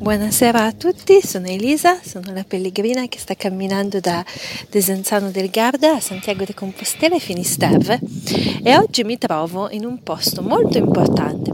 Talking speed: 155 wpm